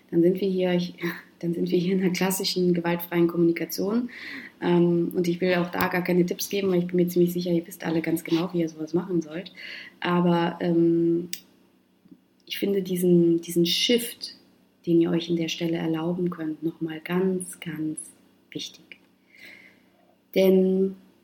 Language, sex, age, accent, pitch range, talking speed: German, female, 20-39, German, 165-185 Hz, 155 wpm